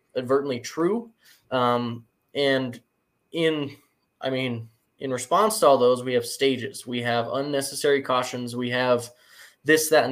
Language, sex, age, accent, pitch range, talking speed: English, male, 10-29, American, 130-170 Hz, 140 wpm